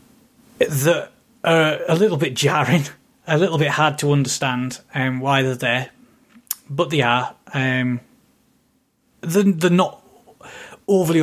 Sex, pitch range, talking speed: male, 130-160 Hz, 130 wpm